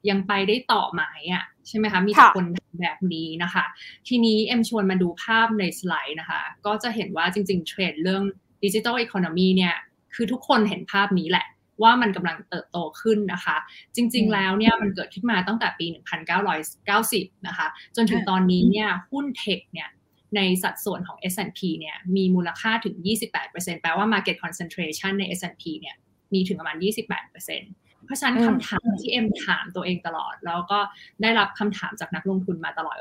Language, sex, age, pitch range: Thai, female, 20-39, 180-215 Hz